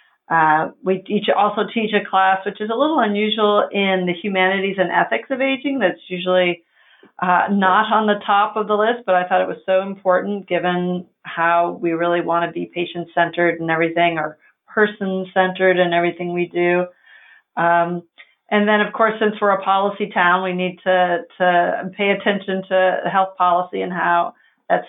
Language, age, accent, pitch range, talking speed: English, 40-59, American, 175-205 Hz, 175 wpm